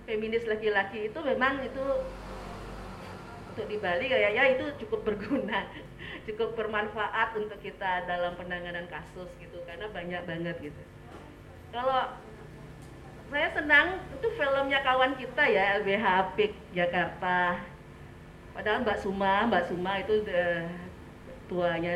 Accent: native